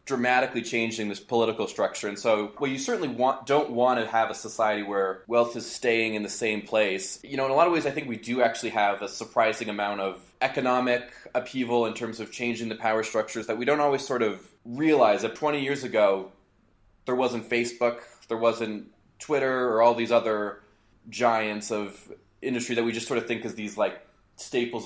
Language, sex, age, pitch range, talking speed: English, male, 20-39, 110-130 Hz, 205 wpm